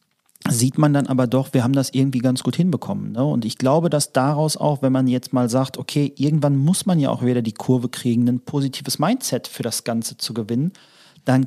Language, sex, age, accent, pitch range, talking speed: German, male, 40-59, German, 125-150 Hz, 220 wpm